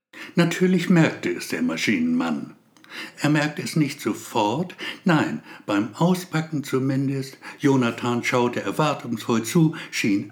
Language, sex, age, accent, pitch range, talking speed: German, male, 60-79, German, 125-165 Hz, 110 wpm